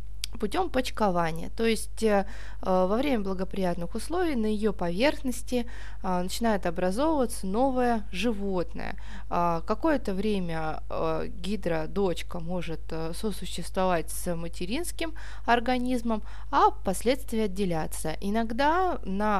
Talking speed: 100 wpm